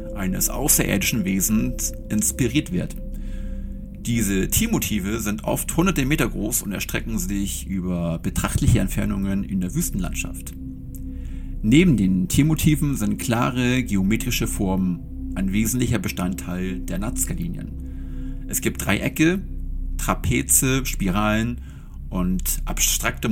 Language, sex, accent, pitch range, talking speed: German, male, German, 90-125 Hz, 105 wpm